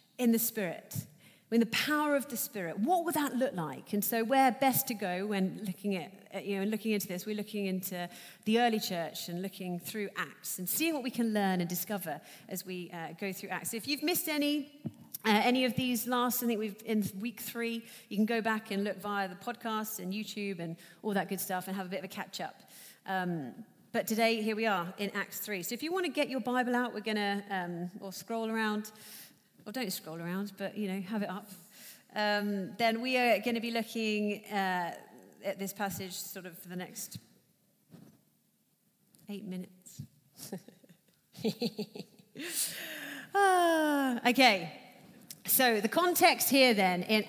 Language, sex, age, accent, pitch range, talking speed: English, female, 40-59, British, 190-245 Hz, 195 wpm